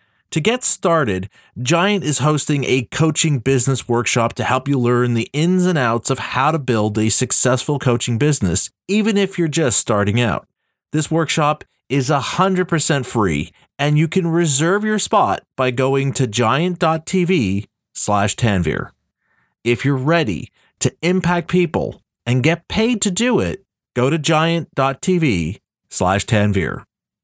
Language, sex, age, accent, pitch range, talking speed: English, male, 40-59, American, 120-170 Hz, 135 wpm